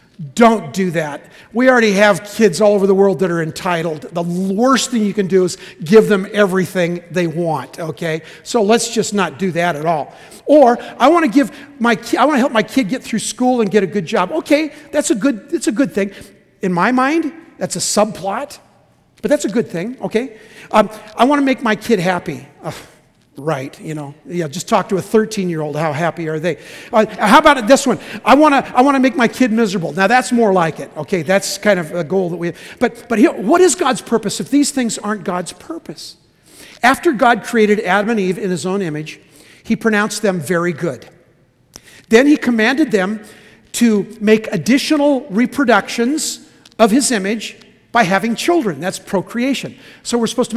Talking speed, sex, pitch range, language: 205 wpm, male, 190-255 Hz, English